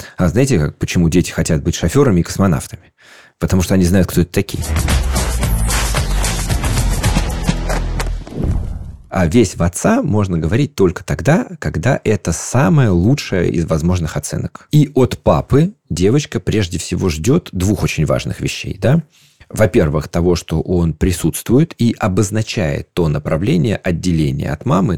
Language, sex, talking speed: Russian, male, 130 wpm